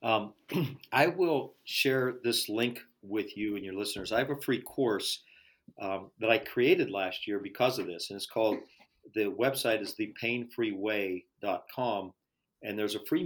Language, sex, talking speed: English, male, 165 wpm